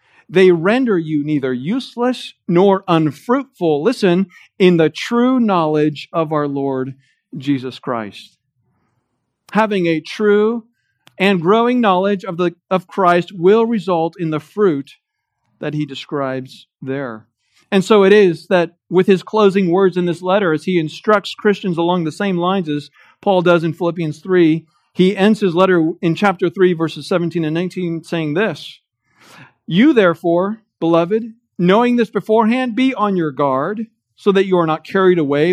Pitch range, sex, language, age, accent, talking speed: 145-195 Hz, male, English, 50-69, American, 155 wpm